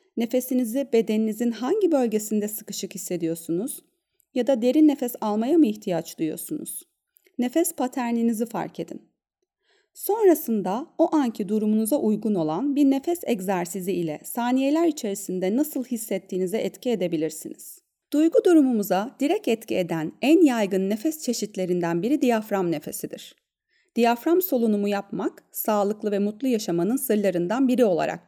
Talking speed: 120 wpm